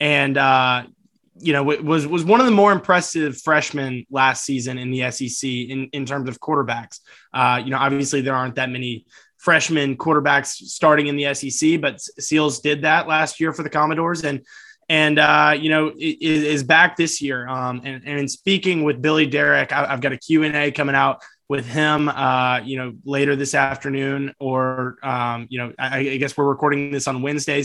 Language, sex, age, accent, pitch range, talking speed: English, male, 20-39, American, 135-160 Hz, 195 wpm